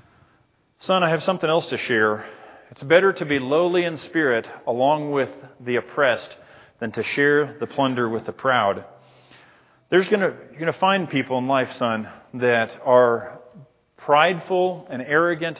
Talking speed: 160 wpm